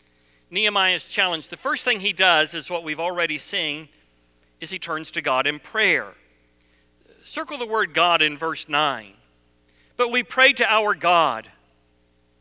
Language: English